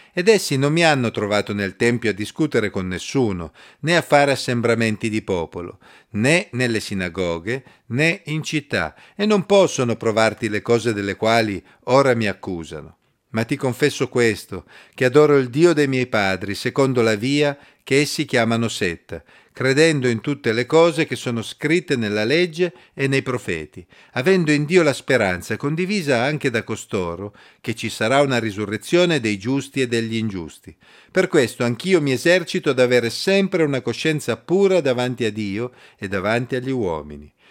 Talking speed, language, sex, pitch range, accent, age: 165 wpm, Italian, male, 110-145 Hz, native, 50-69